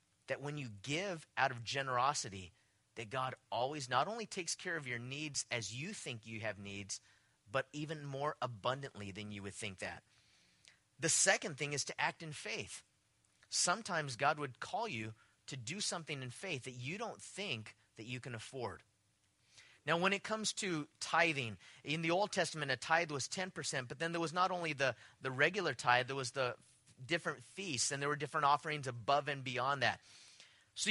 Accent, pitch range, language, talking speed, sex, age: American, 125-165 Hz, English, 190 wpm, male, 30-49